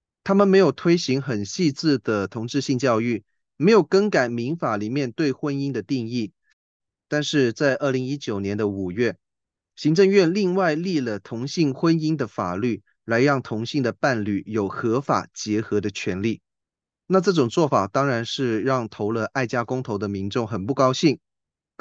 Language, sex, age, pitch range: Chinese, male, 20-39, 110-150 Hz